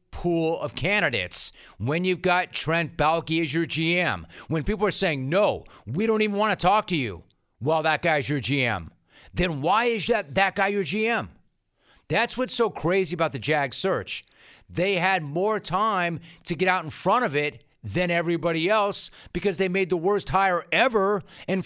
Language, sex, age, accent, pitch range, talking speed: English, male, 40-59, American, 130-185 Hz, 190 wpm